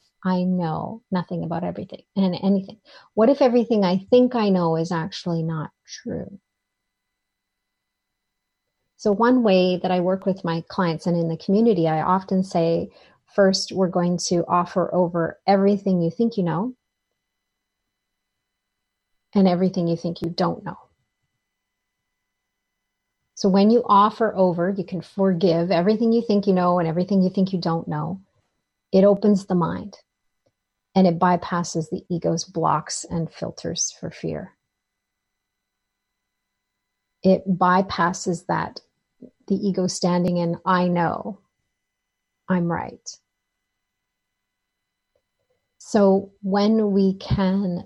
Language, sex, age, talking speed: English, female, 40-59, 125 wpm